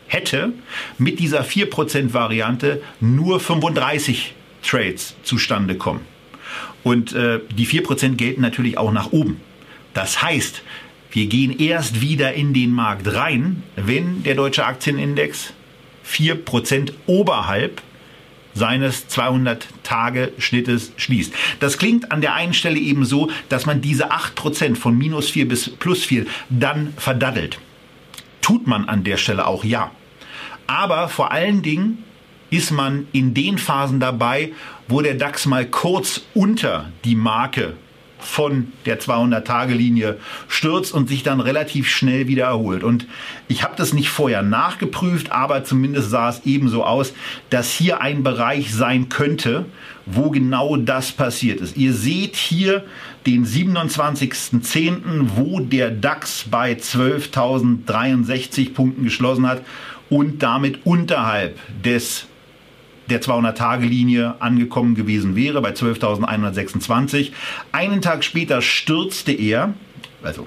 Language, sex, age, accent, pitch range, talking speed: German, male, 50-69, German, 120-150 Hz, 125 wpm